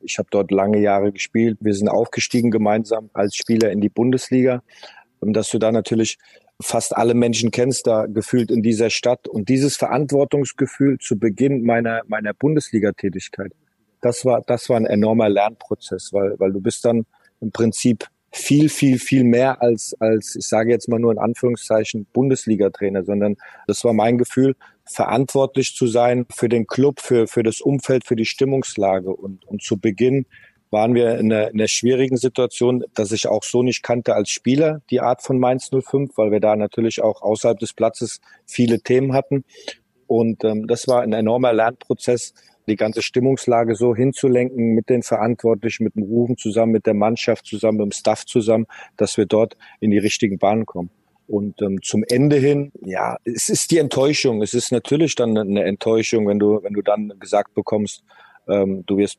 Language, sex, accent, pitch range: German, male, German, 105-125 Hz